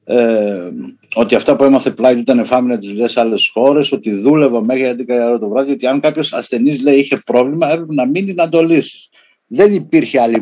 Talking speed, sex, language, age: 200 wpm, male, Greek, 60-79